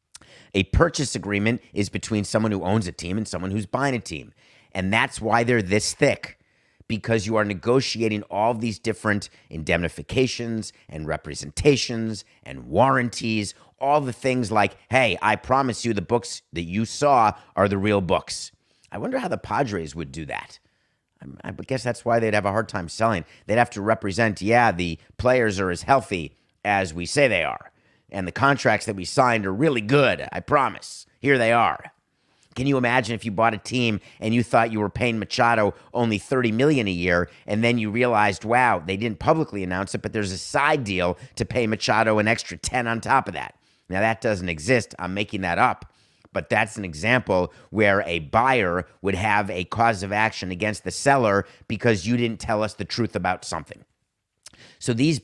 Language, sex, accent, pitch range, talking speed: English, male, American, 95-120 Hz, 195 wpm